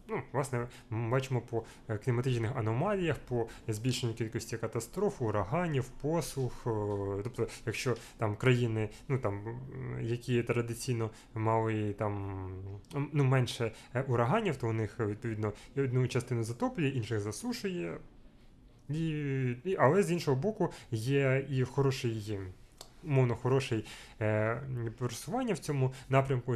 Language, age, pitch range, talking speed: Ukrainian, 20-39, 110-130 Hz, 110 wpm